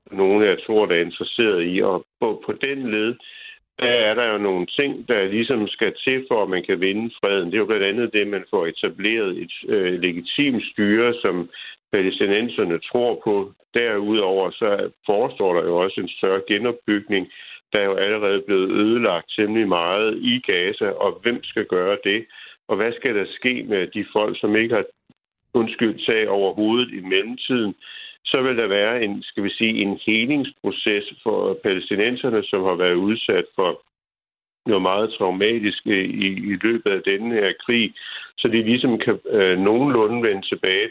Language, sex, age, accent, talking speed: Danish, male, 60-79, native, 175 wpm